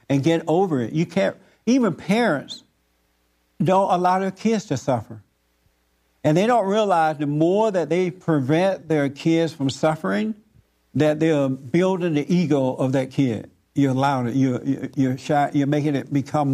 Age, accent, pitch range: 60-79, American, 130-185 Hz